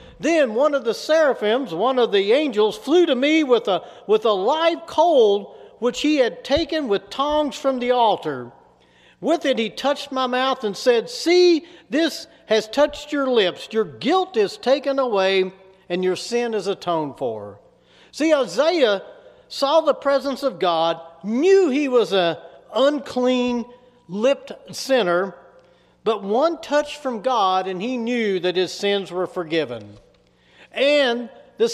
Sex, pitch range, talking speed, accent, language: male, 200-295 Hz, 150 wpm, American, English